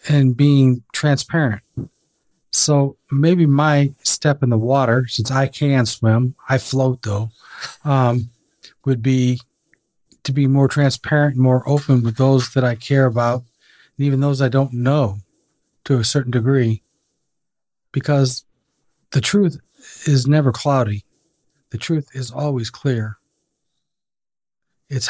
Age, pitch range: 40-59, 125-145 Hz